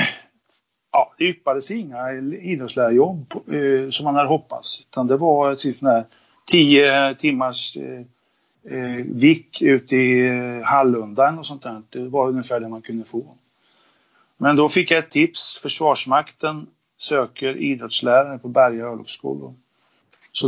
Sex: male